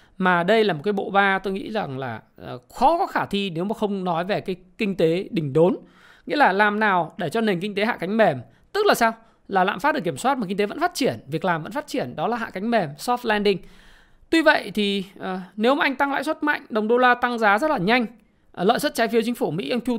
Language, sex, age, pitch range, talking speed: Vietnamese, male, 20-39, 180-235 Hz, 275 wpm